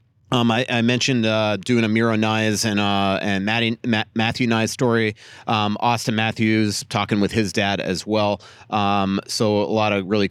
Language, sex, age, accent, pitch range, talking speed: English, male, 30-49, American, 100-120 Hz, 185 wpm